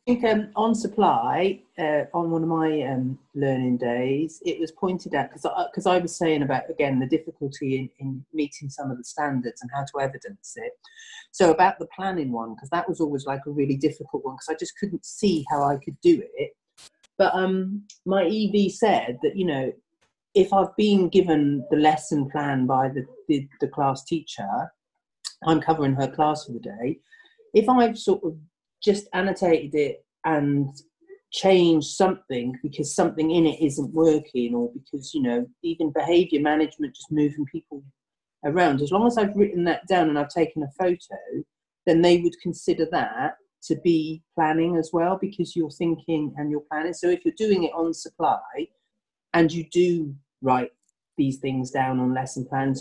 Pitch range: 140-185 Hz